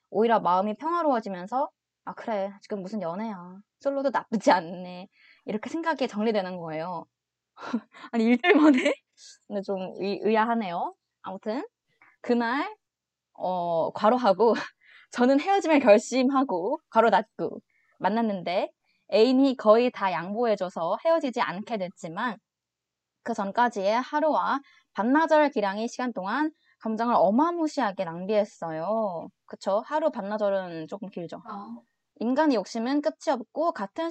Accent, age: native, 20-39